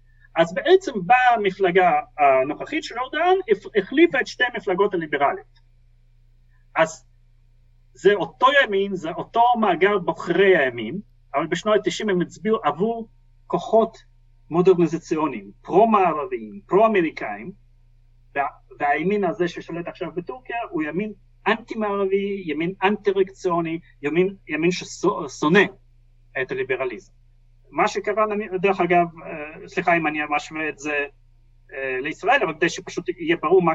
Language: Hebrew